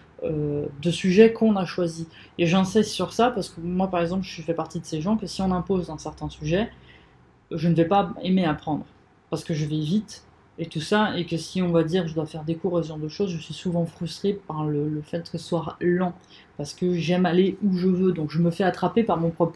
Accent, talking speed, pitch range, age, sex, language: French, 265 wpm, 165-195 Hz, 20-39, female, French